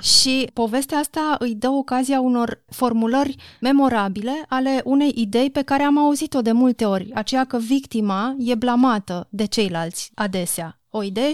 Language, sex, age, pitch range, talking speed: Romanian, female, 30-49, 205-255 Hz, 155 wpm